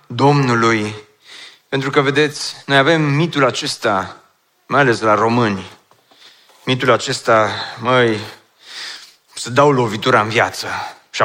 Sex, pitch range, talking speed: male, 140-185 Hz, 110 wpm